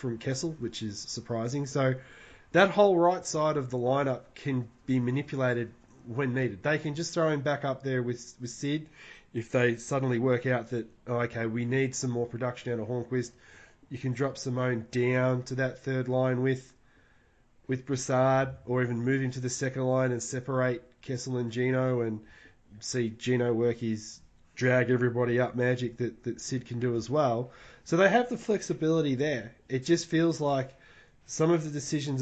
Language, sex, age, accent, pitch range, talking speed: English, male, 20-39, Australian, 120-140 Hz, 185 wpm